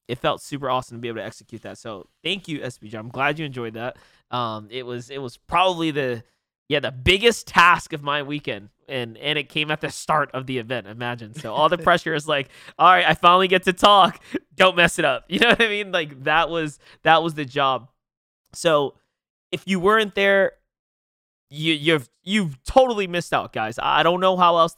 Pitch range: 125-165 Hz